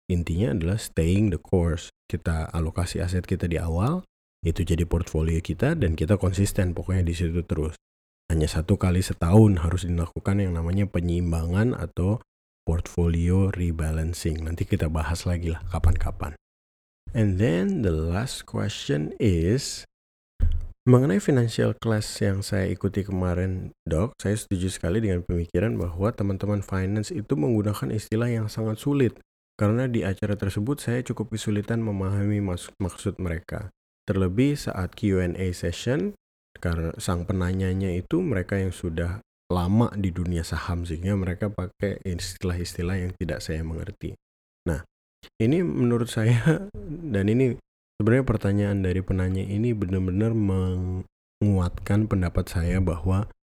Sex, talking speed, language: male, 130 wpm, Indonesian